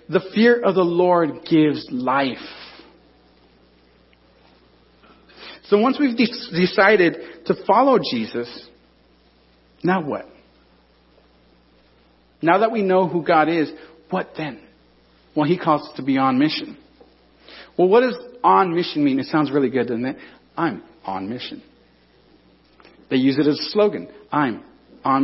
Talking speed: 135 wpm